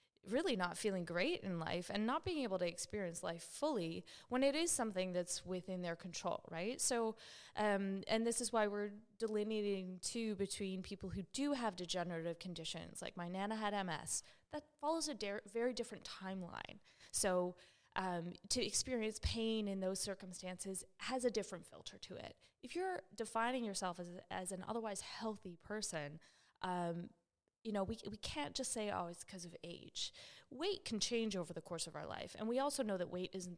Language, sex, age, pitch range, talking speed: English, female, 20-39, 175-220 Hz, 185 wpm